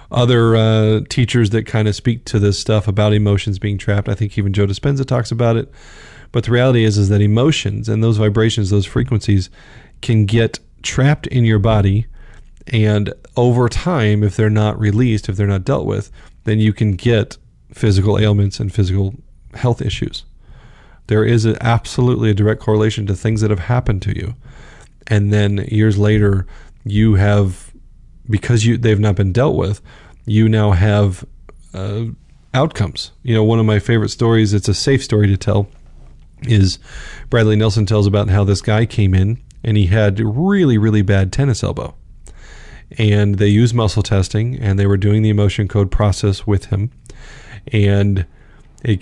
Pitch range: 105-115 Hz